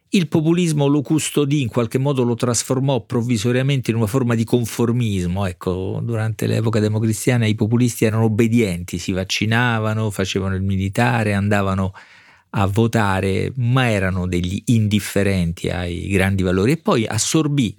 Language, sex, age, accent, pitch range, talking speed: Italian, male, 40-59, native, 95-115 Hz, 140 wpm